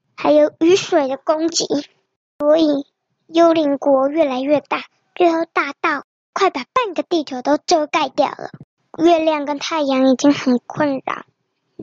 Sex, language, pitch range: male, Chinese, 280-330 Hz